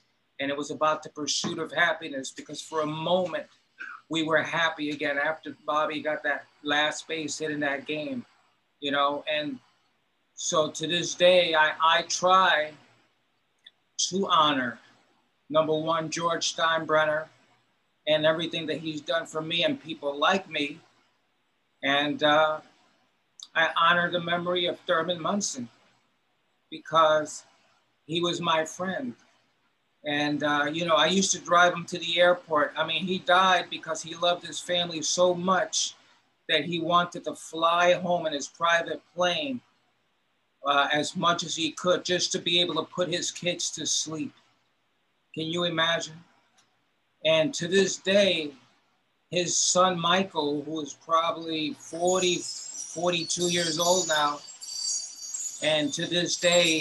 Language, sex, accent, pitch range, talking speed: English, male, American, 155-175 Hz, 145 wpm